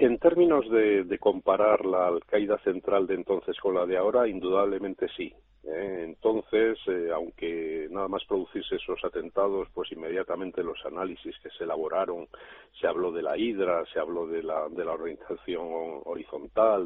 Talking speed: 160 wpm